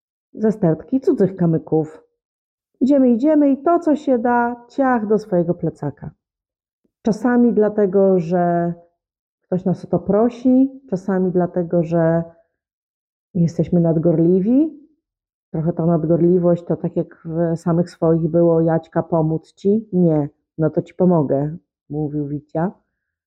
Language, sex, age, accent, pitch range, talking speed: Polish, female, 30-49, native, 165-190 Hz, 125 wpm